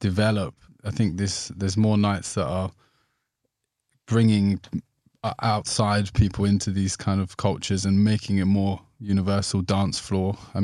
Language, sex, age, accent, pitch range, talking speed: English, male, 20-39, British, 95-110 Hz, 140 wpm